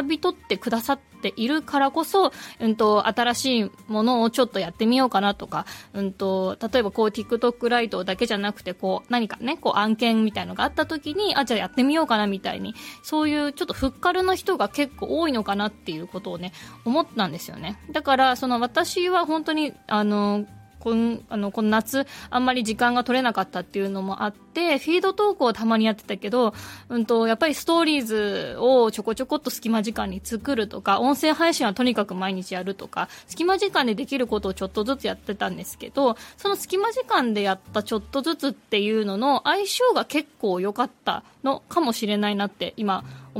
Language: Japanese